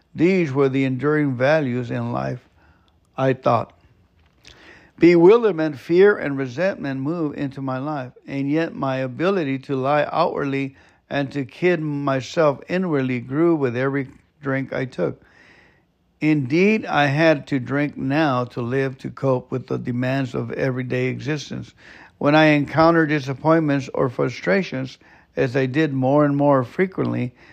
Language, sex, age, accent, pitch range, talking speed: English, male, 60-79, American, 130-160 Hz, 140 wpm